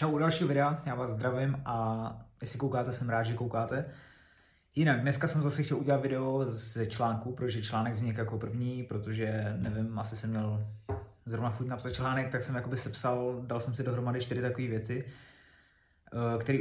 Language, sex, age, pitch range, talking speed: Czech, male, 20-39, 110-125 Hz, 175 wpm